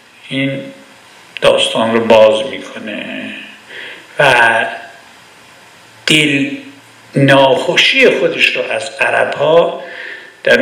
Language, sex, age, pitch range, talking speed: Persian, male, 60-79, 115-155 Hz, 80 wpm